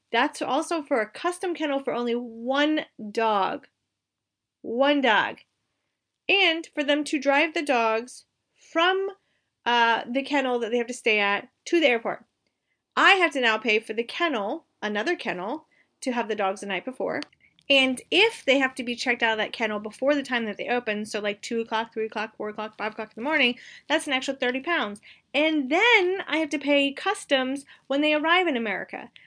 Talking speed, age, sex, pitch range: 195 wpm, 30-49, female, 235-335 Hz